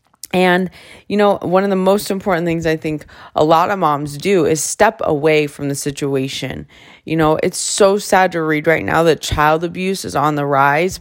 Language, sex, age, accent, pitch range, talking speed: English, female, 20-39, American, 150-195 Hz, 205 wpm